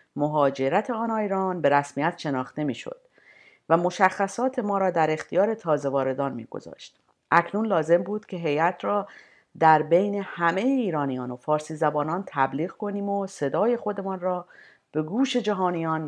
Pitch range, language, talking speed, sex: 160-225 Hz, Persian, 140 wpm, female